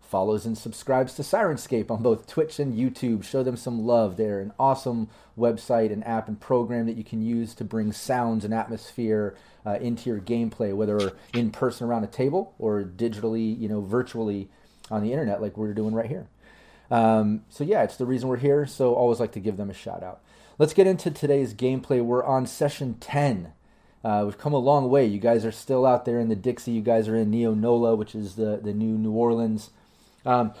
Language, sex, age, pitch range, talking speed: English, male, 30-49, 110-130 Hz, 215 wpm